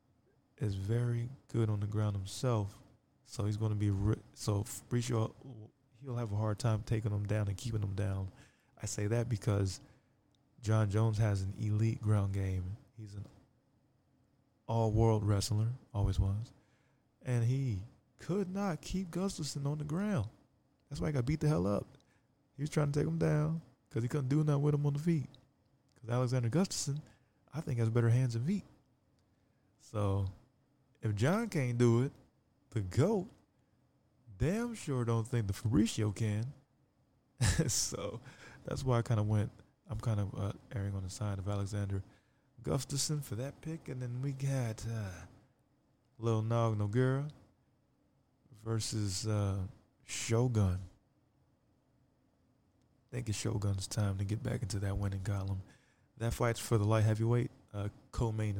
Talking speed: 155 wpm